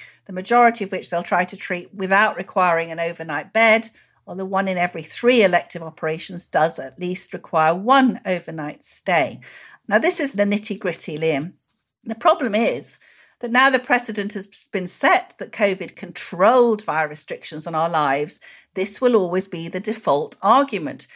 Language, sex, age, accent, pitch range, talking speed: English, female, 50-69, British, 170-225 Hz, 170 wpm